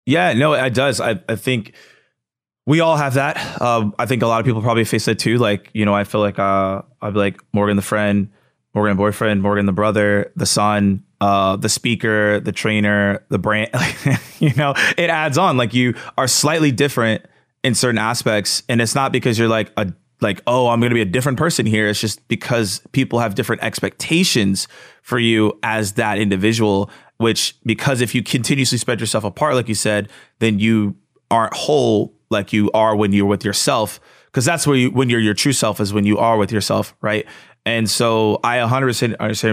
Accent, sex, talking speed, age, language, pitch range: American, male, 205 wpm, 20-39, English, 105-130 Hz